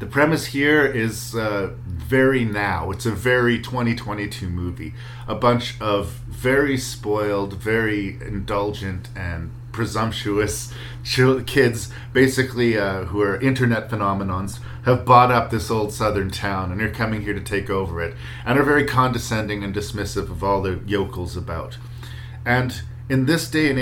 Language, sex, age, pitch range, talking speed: English, male, 40-59, 100-120 Hz, 150 wpm